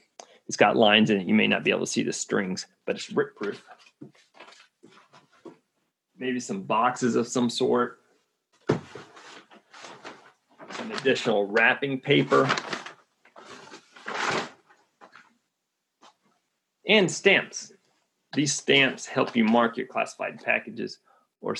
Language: English